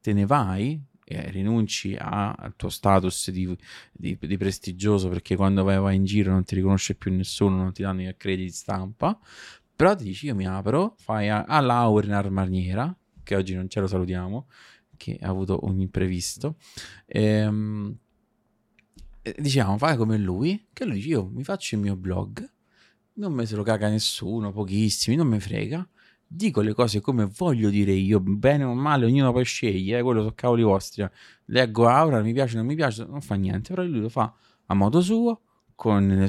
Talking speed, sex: 185 wpm, male